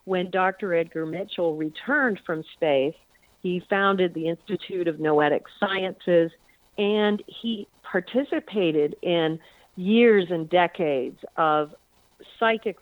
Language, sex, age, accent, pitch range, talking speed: English, female, 50-69, American, 165-210 Hz, 110 wpm